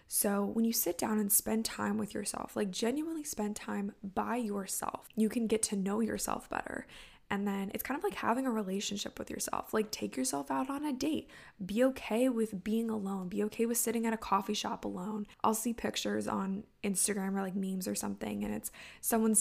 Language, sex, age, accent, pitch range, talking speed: English, female, 10-29, American, 195-225 Hz, 210 wpm